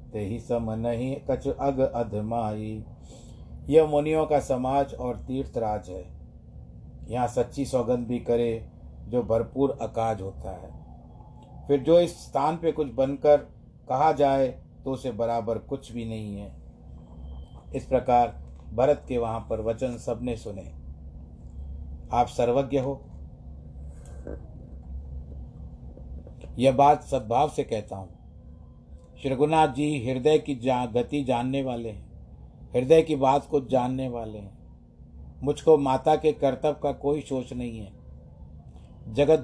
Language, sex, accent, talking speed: Hindi, male, native, 125 wpm